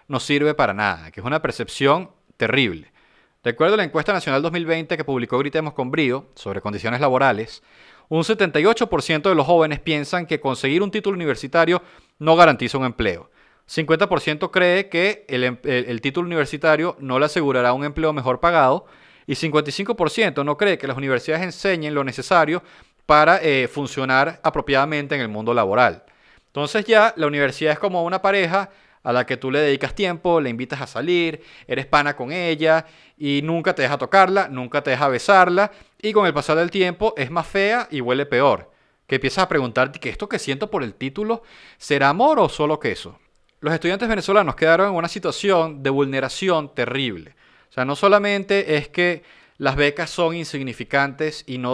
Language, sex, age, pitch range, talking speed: Spanish, male, 30-49, 135-175 Hz, 175 wpm